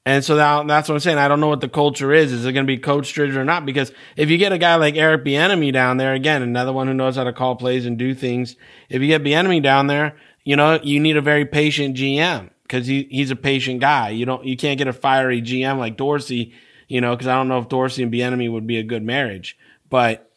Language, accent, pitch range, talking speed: English, American, 120-135 Hz, 270 wpm